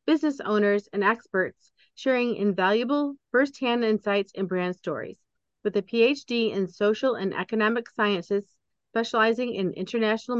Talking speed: 125 wpm